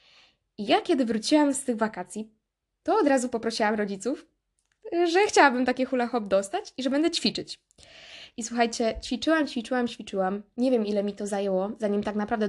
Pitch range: 215-270 Hz